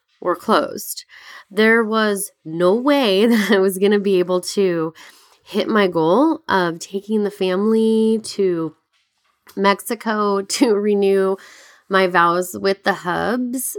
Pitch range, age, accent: 165-215 Hz, 20-39, American